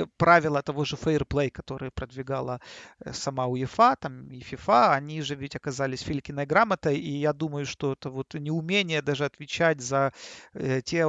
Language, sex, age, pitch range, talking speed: Russian, male, 40-59, 145-195 Hz, 145 wpm